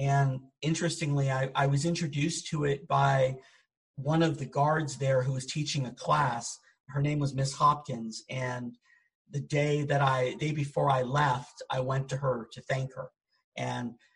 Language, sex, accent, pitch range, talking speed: English, male, American, 130-150 Hz, 175 wpm